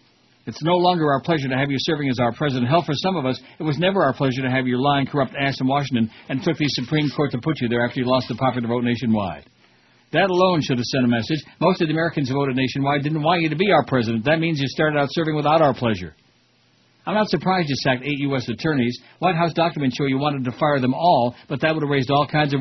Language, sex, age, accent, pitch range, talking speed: English, male, 60-79, American, 130-160 Hz, 275 wpm